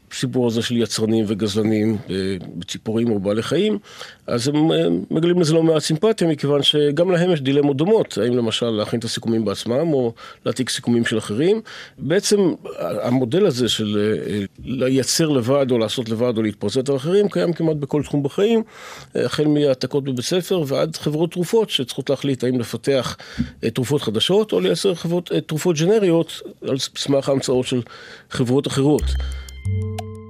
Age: 50-69